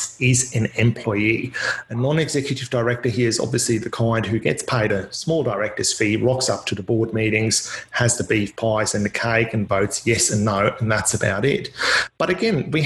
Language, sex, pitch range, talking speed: English, male, 110-140 Hz, 200 wpm